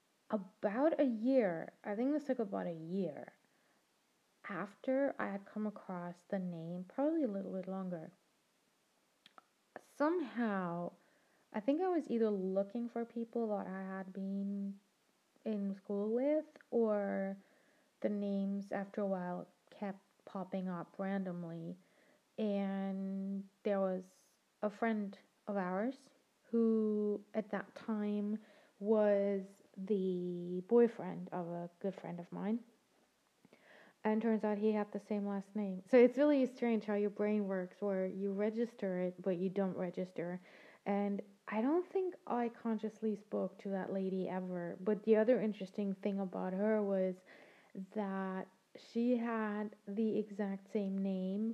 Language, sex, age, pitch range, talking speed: English, female, 20-39, 190-220 Hz, 140 wpm